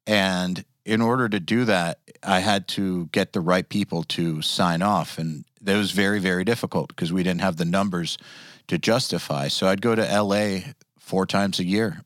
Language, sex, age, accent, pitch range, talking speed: English, male, 40-59, American, 90-105 Hz, 195 wpm